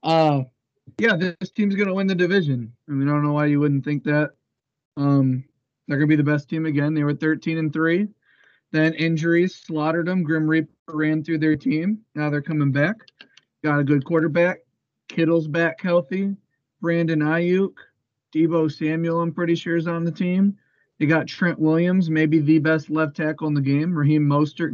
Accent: American